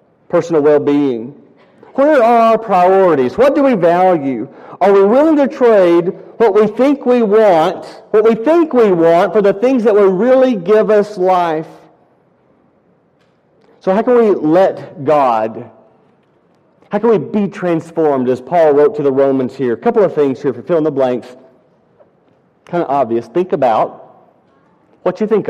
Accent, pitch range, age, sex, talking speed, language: American, 170-245 Hz, 40-59, male, 165 wpm, English